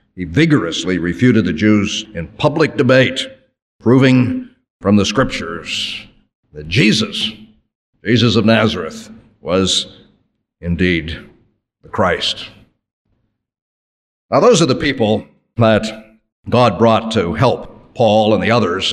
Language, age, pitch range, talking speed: English, 50-69, 100-125 Hz, 110 wpm